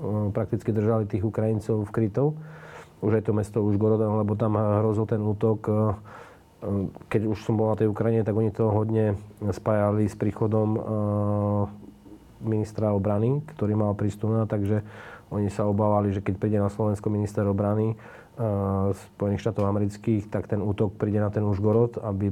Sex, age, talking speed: male, 40-59, 155 wpm